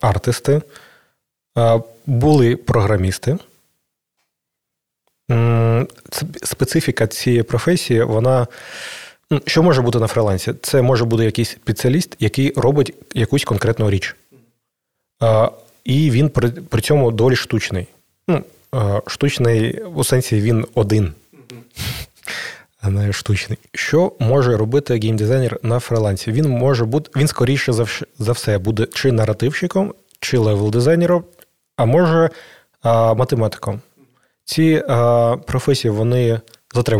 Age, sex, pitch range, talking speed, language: 30-49, male, 110-135 Hz, 95 wpm, Ukrainian